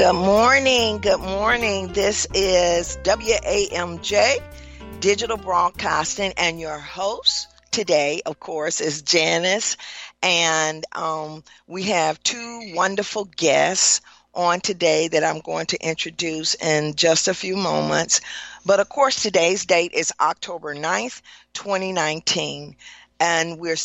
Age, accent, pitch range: 50-69, American, 155-195 Hz